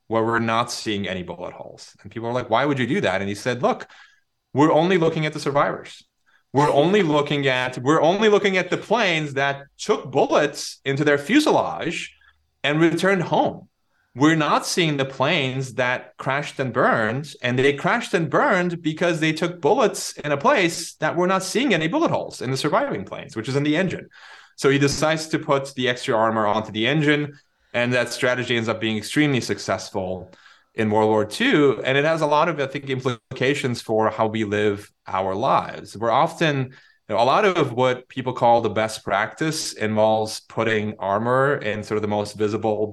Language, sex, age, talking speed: English, male, 30-49, 195 wpm